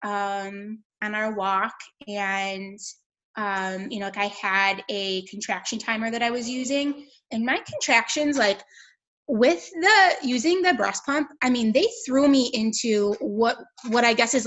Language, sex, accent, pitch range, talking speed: English, female, American, 195-240 Hz, 160 wpm